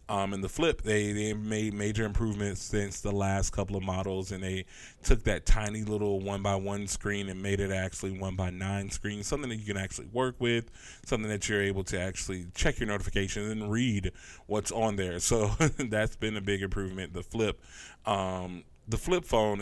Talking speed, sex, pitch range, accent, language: 200 wpm, male, 95-110 Hz, American, English